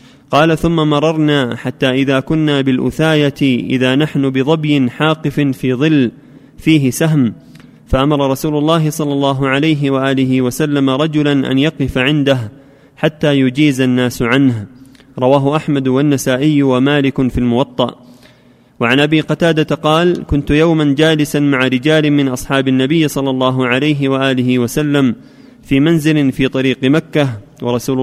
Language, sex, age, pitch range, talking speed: Arabic, male, 30-49, 130-155 Hz, 130 wpm